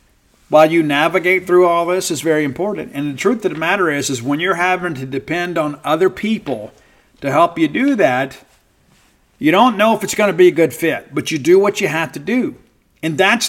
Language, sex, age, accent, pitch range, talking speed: English, male, 50-69, American, 155-195 Hz, 225 wpm